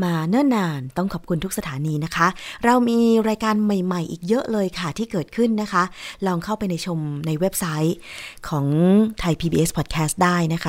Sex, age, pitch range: female, 20-39, 150-185 Hz